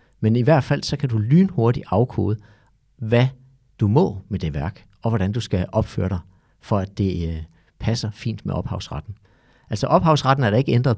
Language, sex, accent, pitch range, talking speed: Danish, male, native, 105-135 Hz, 190 wpm